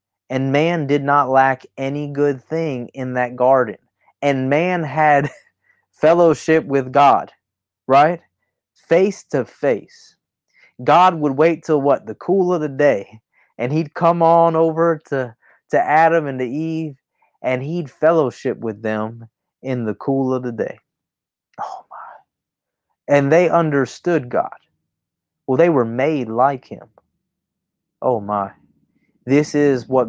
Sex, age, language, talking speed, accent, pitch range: male, 30-49, English, 140 wpm, American, 125-160 Hz